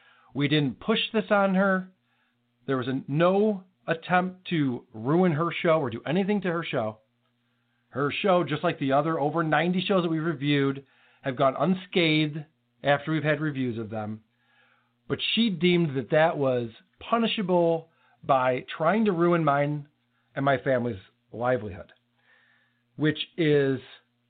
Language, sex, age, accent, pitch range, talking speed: English, male, 40-59, American, 125-170 Hz, 150 wpm